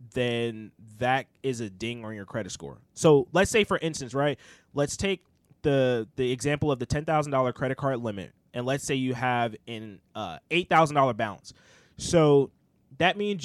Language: English